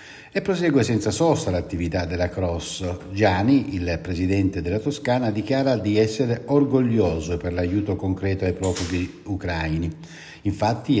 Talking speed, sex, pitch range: 125 wpm, male, 90-130 Hz